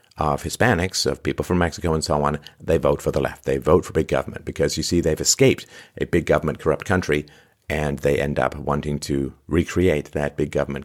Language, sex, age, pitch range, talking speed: English, male, 50-69, 75-115 Hz, 215 wpm